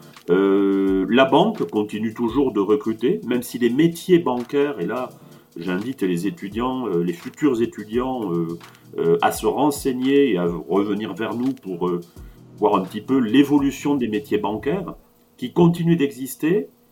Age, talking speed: 40-59, 155 wpm